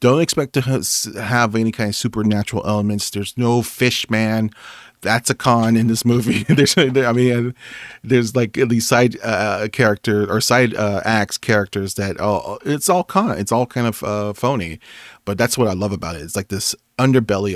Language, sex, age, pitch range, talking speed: English, male, 30-49, 100-120 Hz, 190 wpm